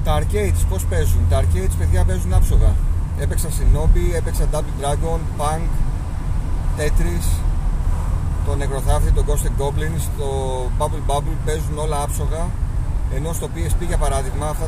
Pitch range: 75-85 Hz